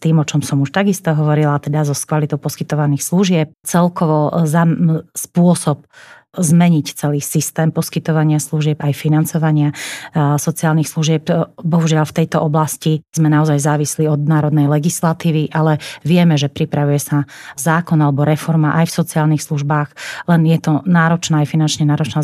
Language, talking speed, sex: Slovak, 150 wpm, female